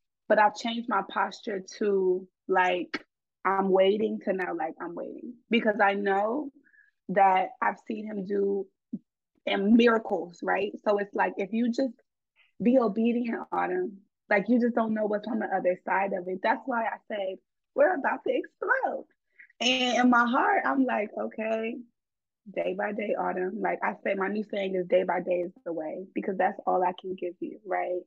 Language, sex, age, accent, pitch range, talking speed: English, female, 20-39, American, 185-230 Hz, 185 wpm